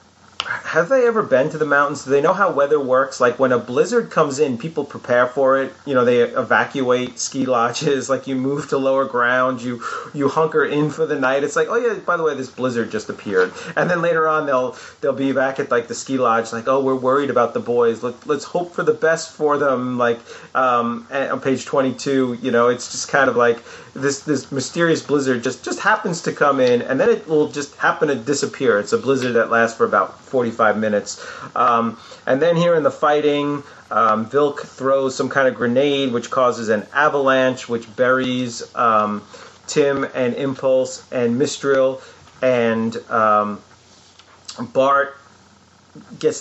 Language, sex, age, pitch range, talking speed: English, male, 30-49, 120-145 Hz, 195 wpm